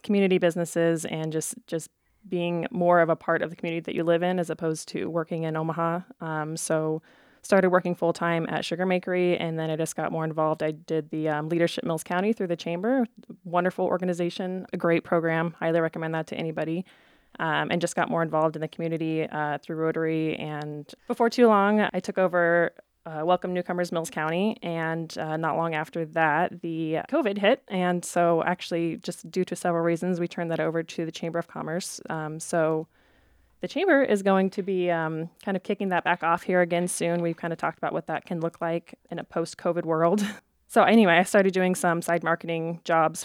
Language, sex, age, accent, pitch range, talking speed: English, female, 20-39, American, 160-180 Hz, 210 wpm